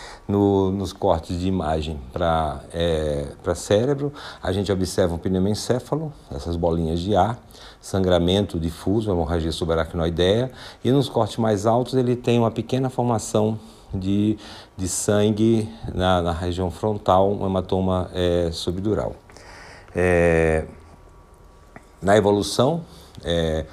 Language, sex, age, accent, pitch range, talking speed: Portuguese, male, 50-69, Brazilian, 85-110 Hz, 115 wpm